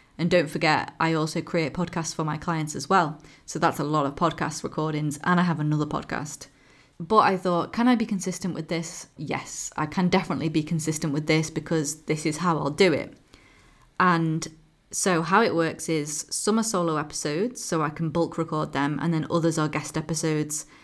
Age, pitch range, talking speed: 20-39, 155-180 Hz, 200 wpm